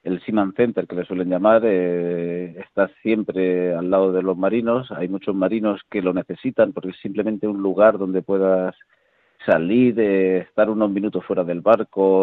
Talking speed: 175 wpm